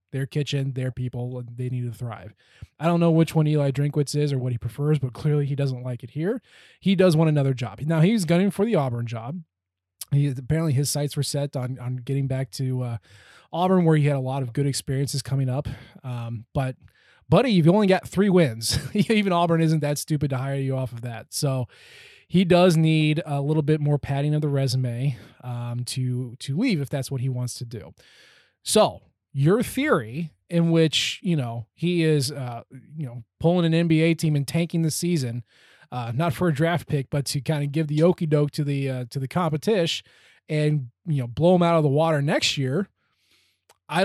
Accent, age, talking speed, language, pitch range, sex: American, 20-39, 215 wpm, English, 130-165 Hz, male